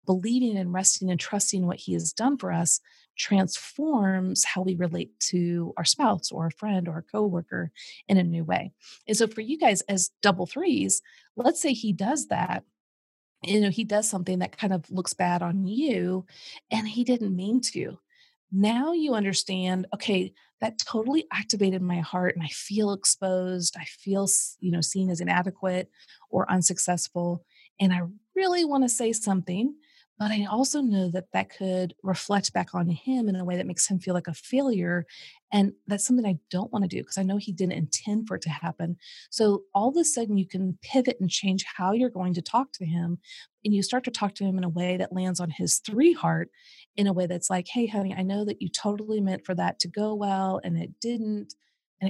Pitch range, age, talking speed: 180-220 Hz, 30-49, 210 wpm